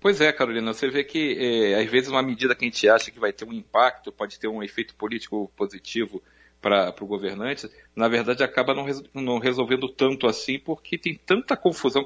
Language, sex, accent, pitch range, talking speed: Portuguese, male, Brazilian, 115-160 Hz, 195 wpm